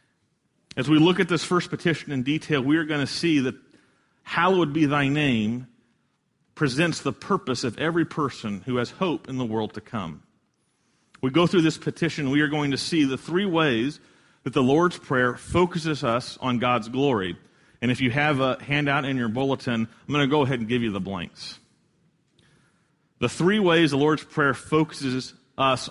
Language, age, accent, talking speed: English, 40-59, American, 190 wpm